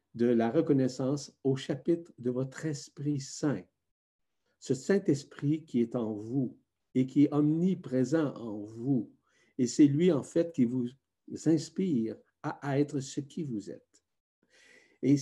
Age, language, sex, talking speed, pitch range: 60-79, French, male, 145 wpm, 115-150 Hz